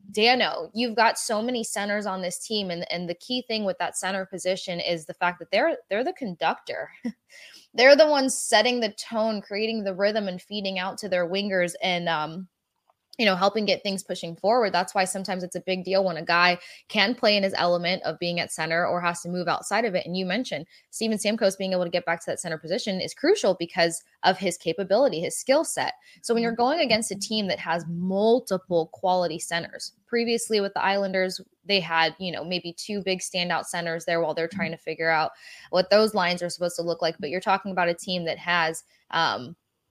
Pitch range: 170-210 Hz